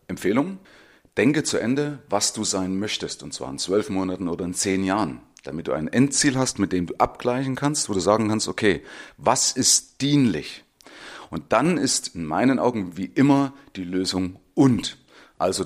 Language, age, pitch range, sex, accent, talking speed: German, 30-49, 95-135 Hz, male, German, 180 wpm